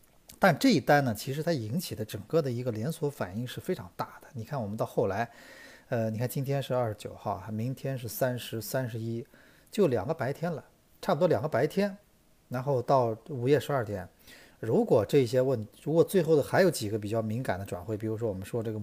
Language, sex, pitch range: Chinese, male, 110-130 Hz